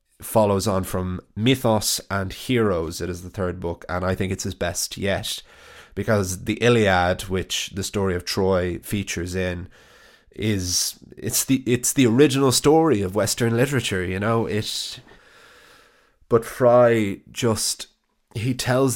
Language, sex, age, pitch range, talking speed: English, male, 20-39, 95-110 Hz, 145 wpm